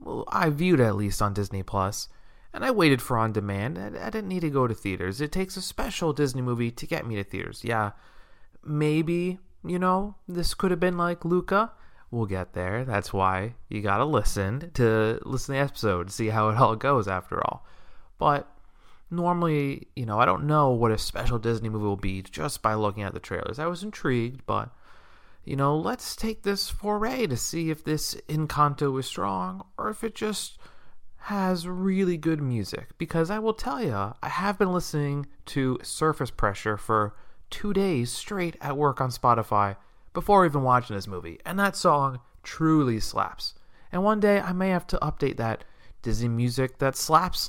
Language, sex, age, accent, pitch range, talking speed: English, male, 30-49, American, 110-170 Hz, 190 wpm